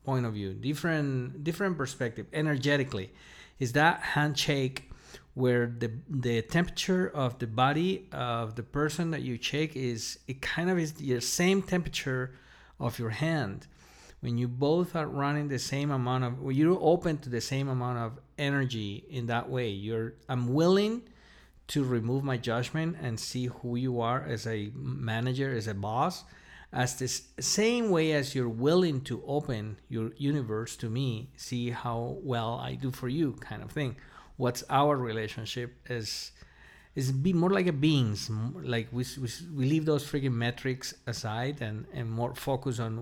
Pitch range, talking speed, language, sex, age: 120-150 Hz, 165 wpm, English, male, 50-69